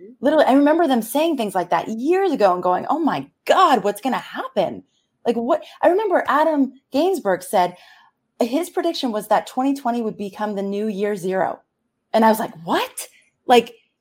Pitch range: 210-285 Hz